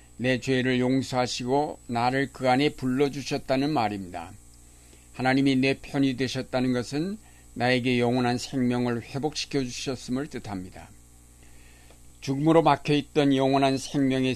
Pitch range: 95-140 Hz